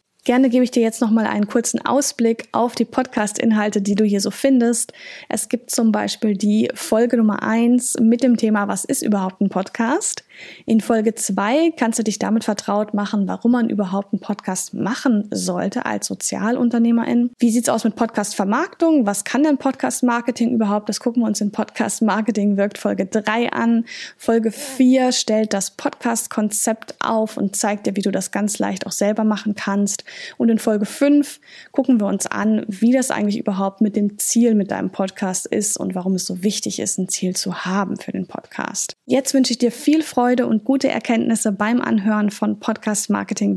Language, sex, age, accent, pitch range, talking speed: German, female, 10-29, German, 205-245 Hz, 185 wpm